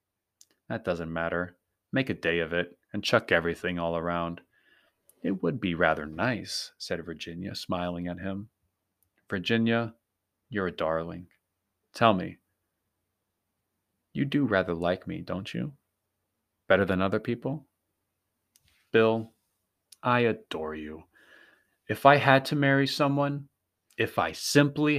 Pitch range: 90-120 Hz